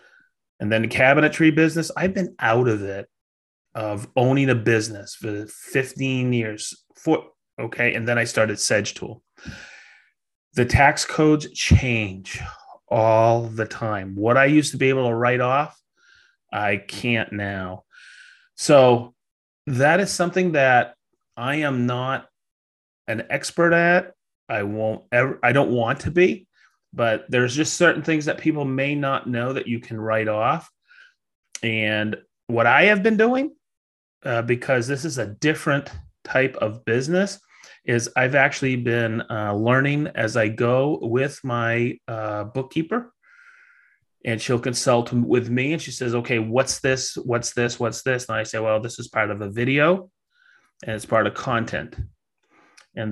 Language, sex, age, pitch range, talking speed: English, male, 30-49, 110-145 Hz, 155 wpm